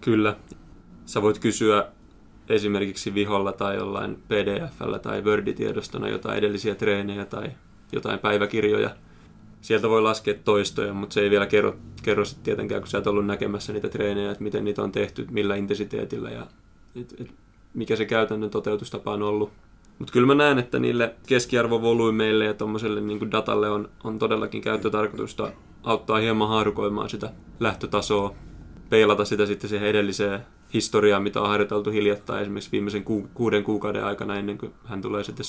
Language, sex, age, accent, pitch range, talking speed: Finnish, male, 20-39, native, 100-110 Hz, 155 wpm